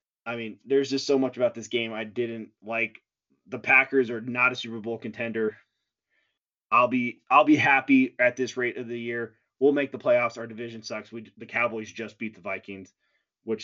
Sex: male